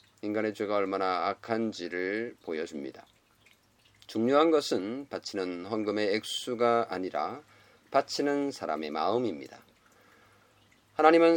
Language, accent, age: Korean, native, 40-59